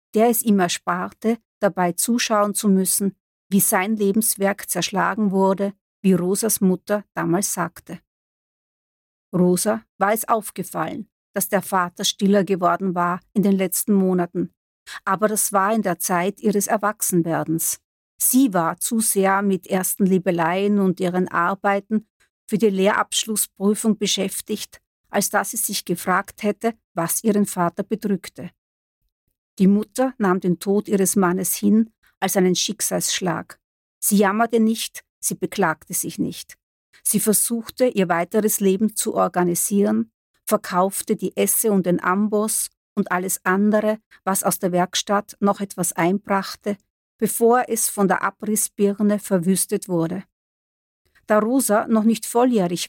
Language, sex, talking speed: German, female, 135 wpm